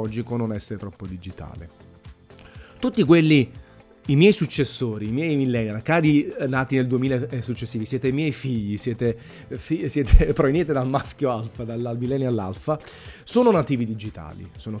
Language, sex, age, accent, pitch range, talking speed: Italian, male, 30-49, native, 110-145 Hz, 140 wpm